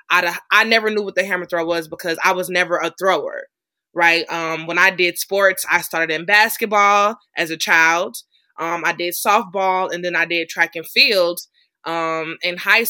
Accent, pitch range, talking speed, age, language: American, 165-205 Hz, 190 wpm, 20-39, English